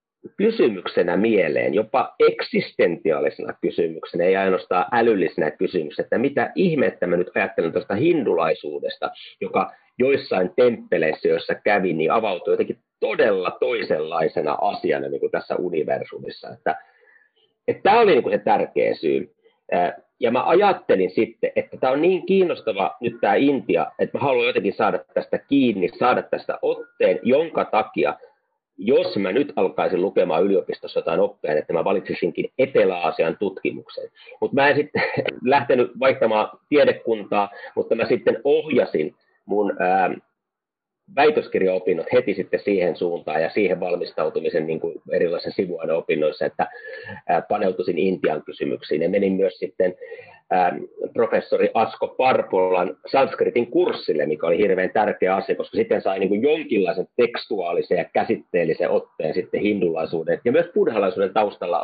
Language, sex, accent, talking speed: Finnish, male, native, 130 wpm